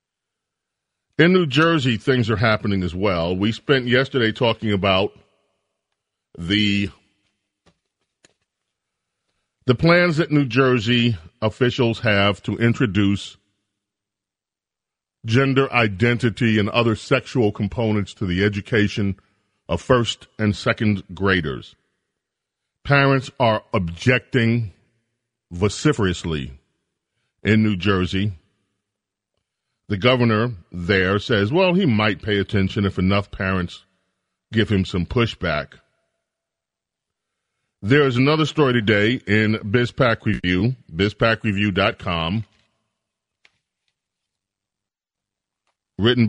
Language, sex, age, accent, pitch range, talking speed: English, male, 40-59, American, 100-125 Hz, 90 wpm